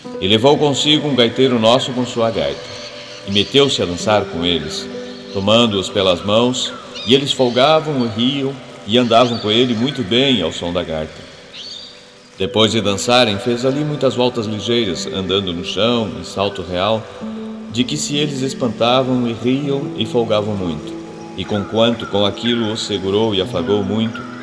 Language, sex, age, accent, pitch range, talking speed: Portuguese, male, 40-59, Brazilian, 95-125 Hz, 160 wpm